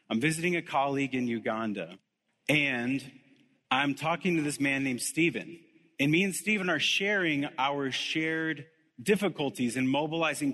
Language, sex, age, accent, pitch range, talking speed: English, male, 30-49, American, 130-165 Hz, 140 wpm